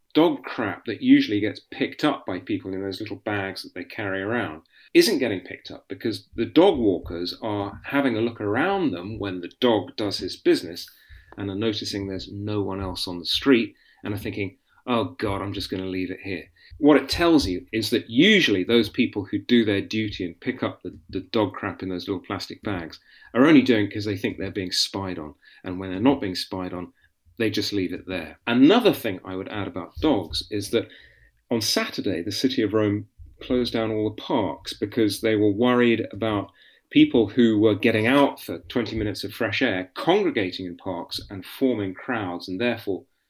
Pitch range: 95-120 Hz